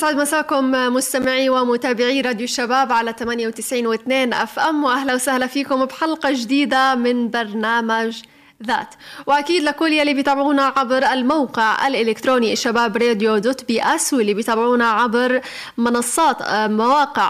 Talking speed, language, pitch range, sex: 120 wpm, Arabic, 225-265 Hz, female